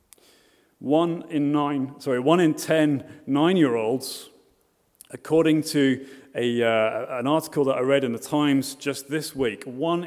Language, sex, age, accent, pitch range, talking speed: English, male, 30-49, British, 125-160 Hz, 145 wpm